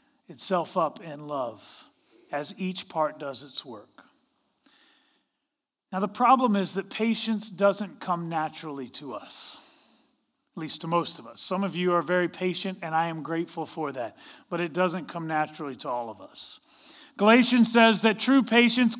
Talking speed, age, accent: 165 wpm, 40-59, American